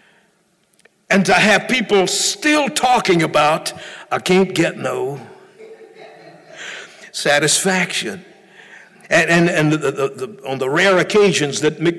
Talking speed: 120 wpm